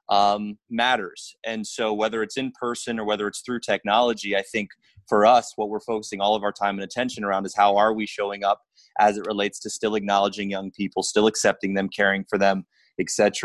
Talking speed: 215 wpm